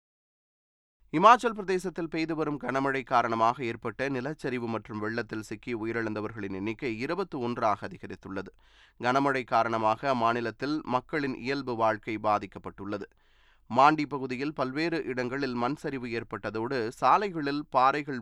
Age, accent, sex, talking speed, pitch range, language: 20-39, native, male, 105 wpm, 115-150 Hz, Tamil